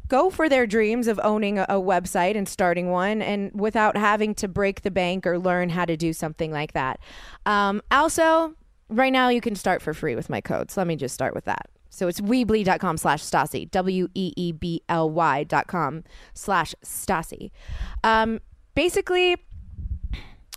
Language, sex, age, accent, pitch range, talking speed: English, female, 20-39, American, 185-260 Hz, 165 wpm